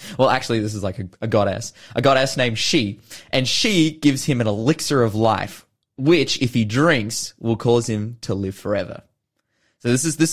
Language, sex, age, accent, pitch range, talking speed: English, male, 20-39, Australian, 105-135 Hz, 200 wpm